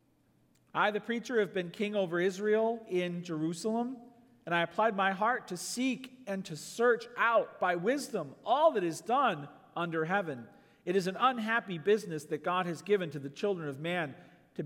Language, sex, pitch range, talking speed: English, male, 175-235 Hz, 180 wpm